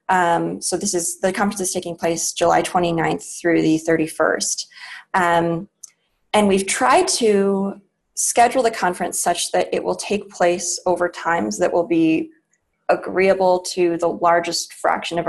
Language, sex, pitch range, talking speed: English, female, 170-200 Hz, 155 wpm